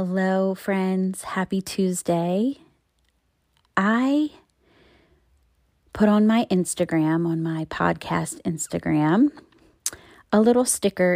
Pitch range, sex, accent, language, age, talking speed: 155-200 Hz, female, American, English, 30-49, 85 wpm